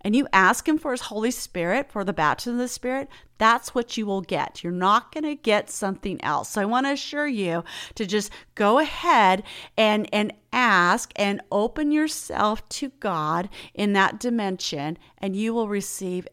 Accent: American